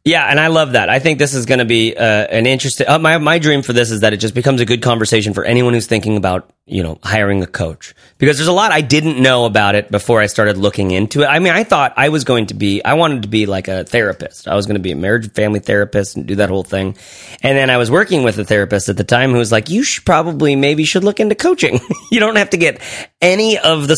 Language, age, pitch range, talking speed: English, 30-49, 105-145 Hz, 290 wpm